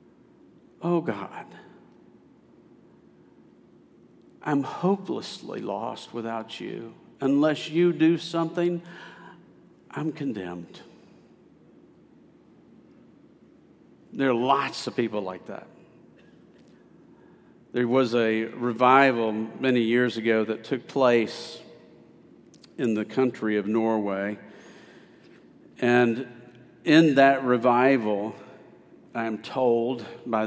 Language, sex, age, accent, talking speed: English, male, 50-69, American, 85 wpm